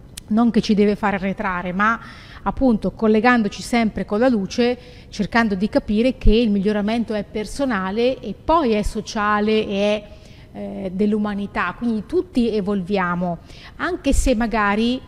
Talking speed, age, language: 140 wpm, 30-49, Italian